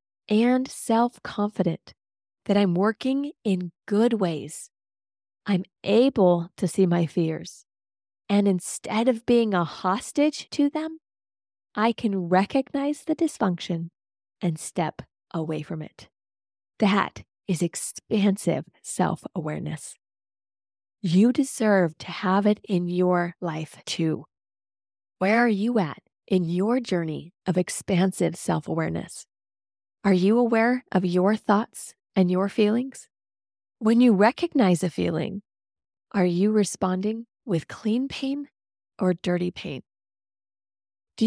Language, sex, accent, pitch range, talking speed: English, female, American, 170-230 Hz, 115 wpm